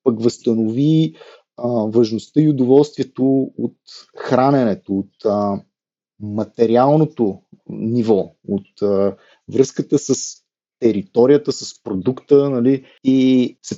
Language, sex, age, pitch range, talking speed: Bulgarian, male, 30-49, 115-150 Hz, 90 wpm